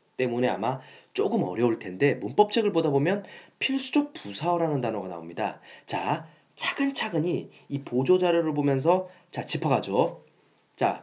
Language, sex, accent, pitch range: Korean, male, native, 145-225 Hz